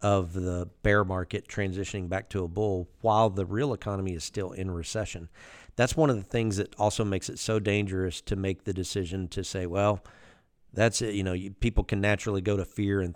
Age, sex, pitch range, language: 50-69, male, 95-110 Hz, English